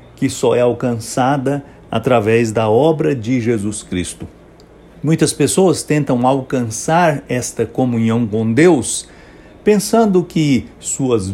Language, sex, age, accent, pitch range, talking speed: English, male, 60-79, Brazilian, 110-160 Hz, 110 wpm